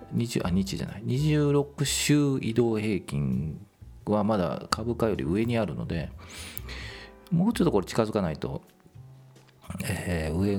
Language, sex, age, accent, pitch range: Japanese, male, 40-59, native, 85-120 Hz